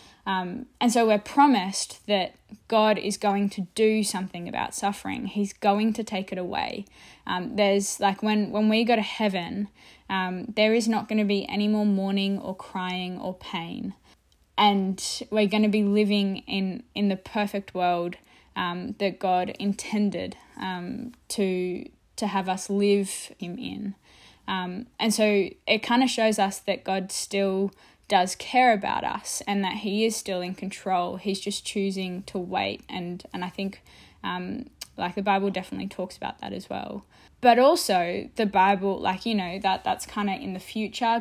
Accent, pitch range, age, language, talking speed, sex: Australian, 190-220 Hz, 10-29, English, 175 wpm, female